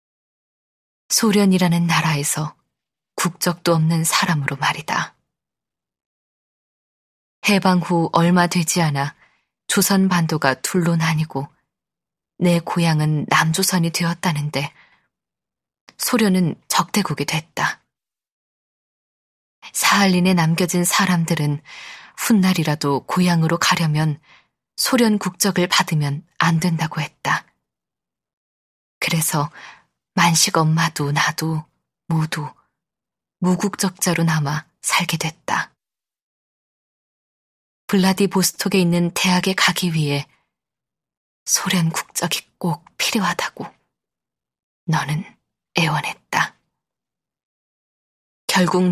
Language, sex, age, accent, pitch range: Korean, female, 20-39, native, 155-185 Hz